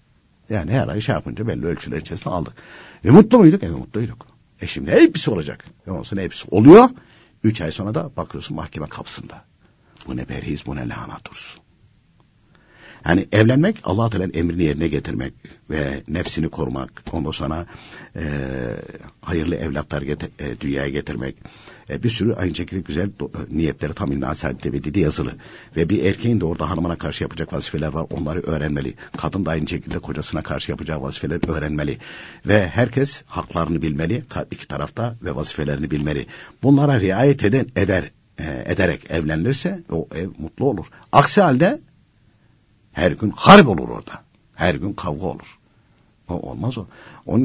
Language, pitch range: Turkish, 75-115 Hz